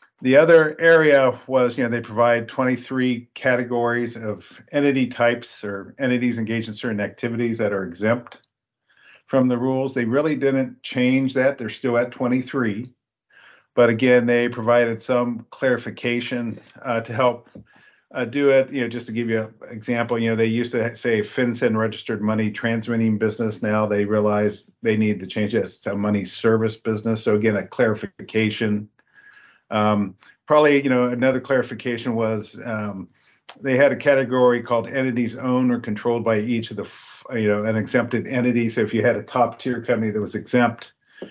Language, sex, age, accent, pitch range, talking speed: English, male, 50-69, American, 110-125 Hz, 175 wpm